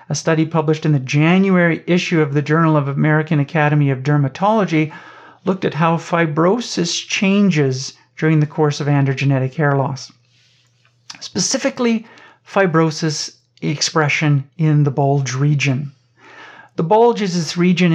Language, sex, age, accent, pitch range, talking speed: English, male, 50-69, American, 145-170 Hz, 130 wpm